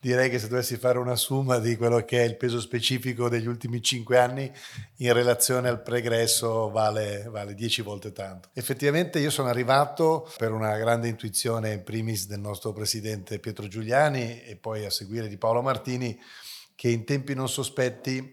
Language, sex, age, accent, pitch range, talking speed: Italian, male, 40-59, native, 110-125 Hz, 175 wpm